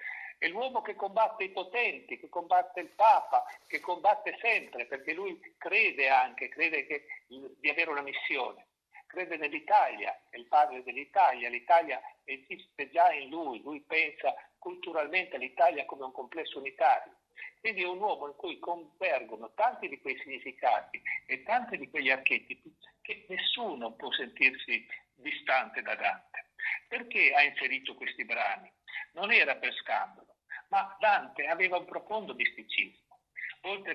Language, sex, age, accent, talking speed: Italian, male, 60-79, native, 140 wpm